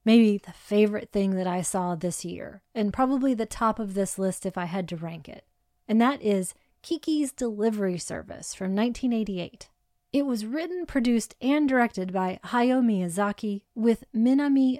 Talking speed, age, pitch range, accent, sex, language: 165 wpm, 30-49, 195-255 Hz, American, female, English